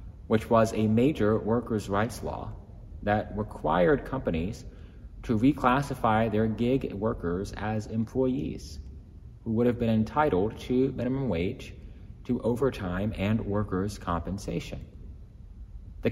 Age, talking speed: 30-49, 115 wpm